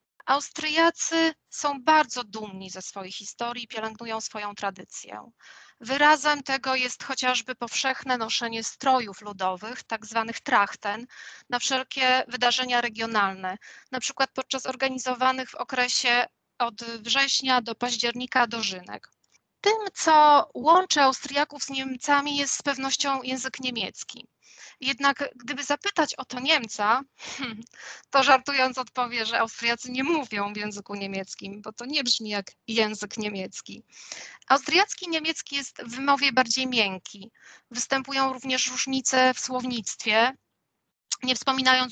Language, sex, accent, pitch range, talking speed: Polish, female, native, 220-270 Hz, 120 wpm